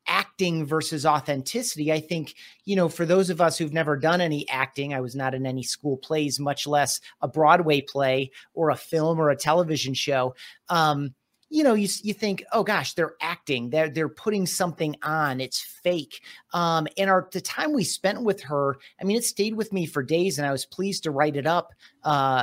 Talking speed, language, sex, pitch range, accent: 210 wpm, English, male, 145-190 Hz, American